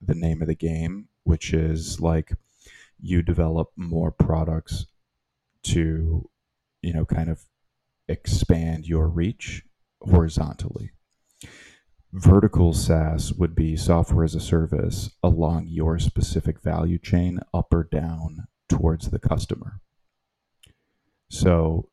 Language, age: English, 30-49